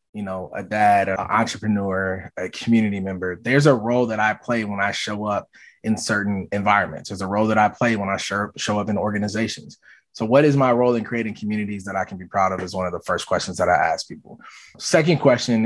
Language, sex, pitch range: English, male, 100-125 Hz